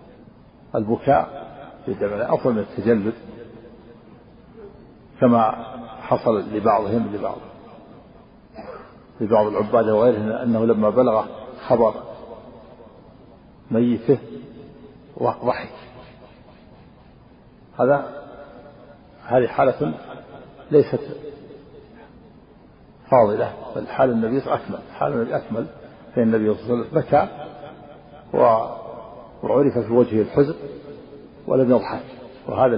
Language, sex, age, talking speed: Arabic, male, 60-79, 85 wpm